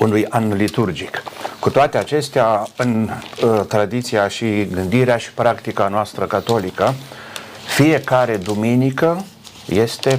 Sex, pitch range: male, 105-130 Hz